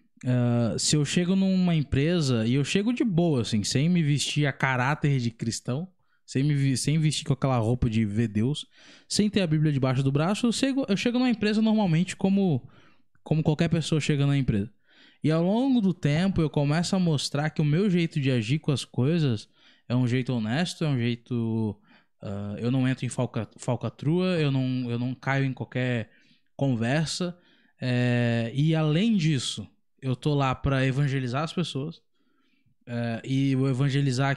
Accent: Brazilian